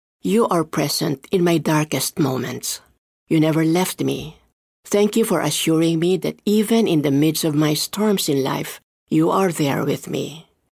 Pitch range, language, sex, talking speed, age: 150-210 Hz, Filipino, female, 175 wpm, 50-69